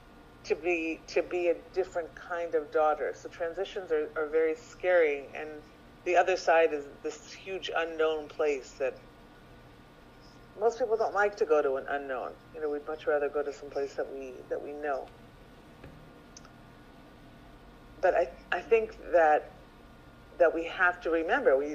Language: English